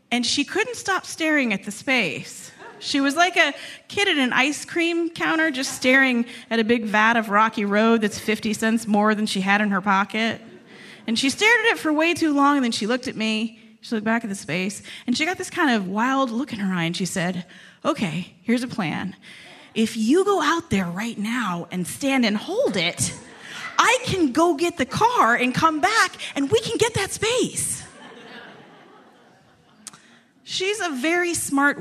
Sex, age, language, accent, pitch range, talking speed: female, 30-49, English, American, 200-285 Hz, 200 wpm